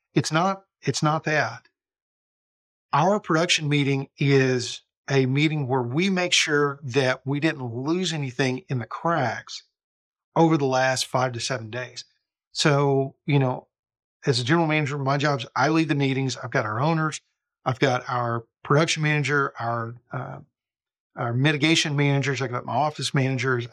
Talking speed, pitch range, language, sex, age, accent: 155 wpm, 130-160 Hz, English, male, 50-69, American